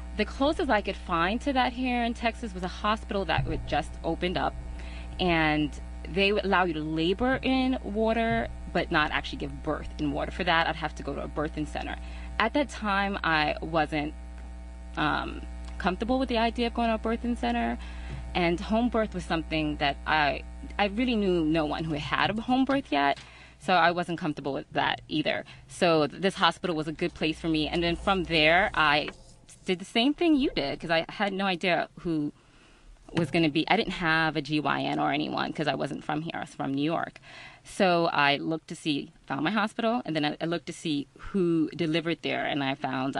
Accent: American